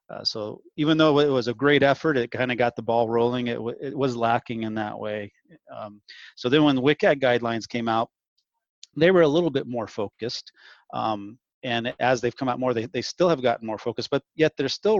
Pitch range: 110-130 Hz